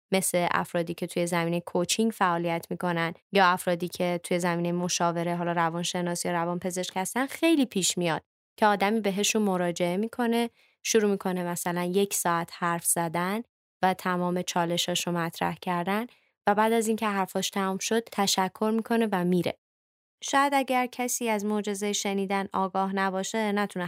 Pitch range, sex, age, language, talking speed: 175-215 Hz, female, 20-39, Persian, 155 wpm